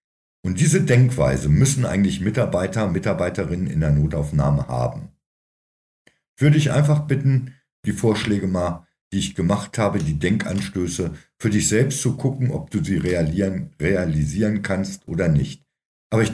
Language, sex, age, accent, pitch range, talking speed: German, male, 50-69, German, 75-120 Hz, 150 wpm